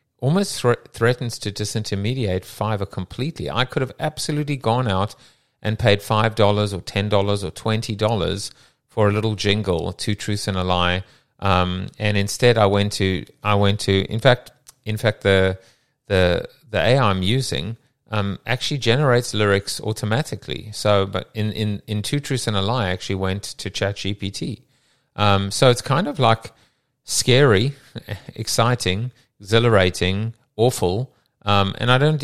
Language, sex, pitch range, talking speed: English, male, 95-120 Hz, 160 wpm